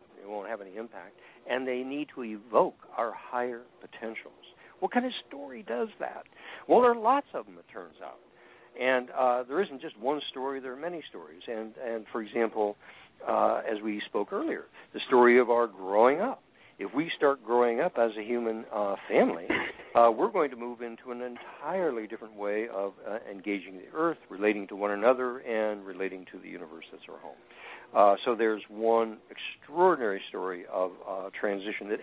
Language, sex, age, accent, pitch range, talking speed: English, male, 60-79, American, 105-130 Hz, 190 wpm